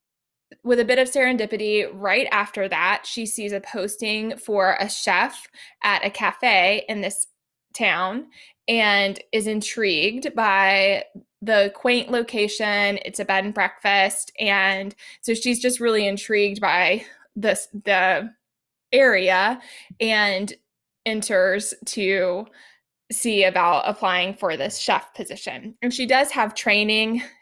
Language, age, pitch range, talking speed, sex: English, 20-39, 200-245 Hz, 125 wpm, female